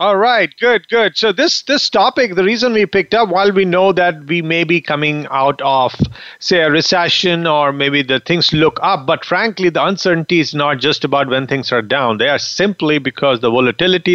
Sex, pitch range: male, 140-185 Hz